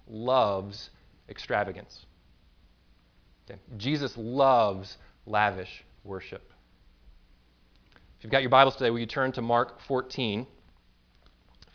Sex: male